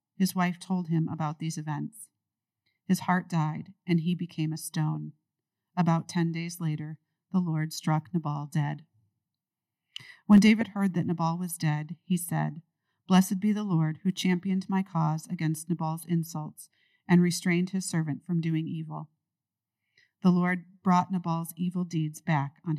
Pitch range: 155-180 Hz